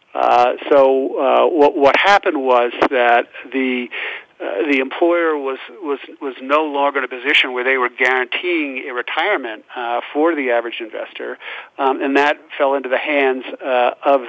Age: 50-69